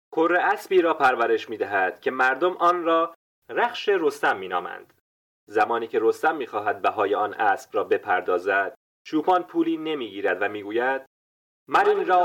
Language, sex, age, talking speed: Persian, male, 30-49, 165 wpm